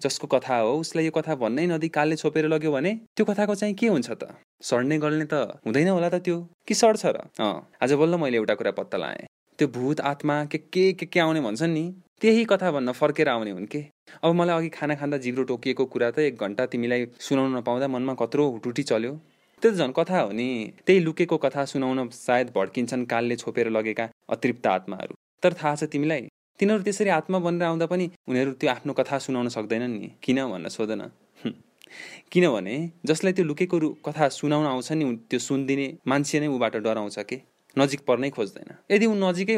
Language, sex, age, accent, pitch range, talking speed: English, male, 20-39, Indian, 125-165 Hz, 105 wpm